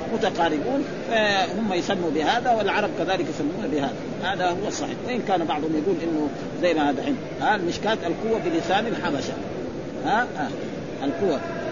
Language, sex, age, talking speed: Arabic, male, 50-69, 135 wpm